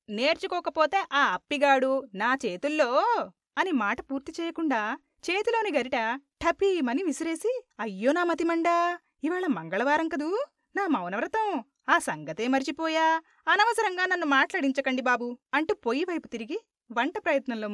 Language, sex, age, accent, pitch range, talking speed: Telugu, female, 20-39, native, 250-345 Hz, 115 wpm